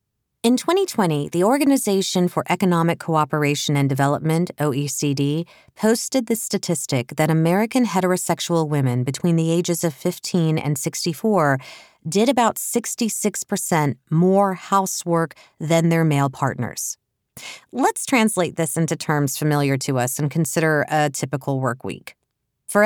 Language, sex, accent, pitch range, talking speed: English, female, American, 150-215 Hz, 125 wpm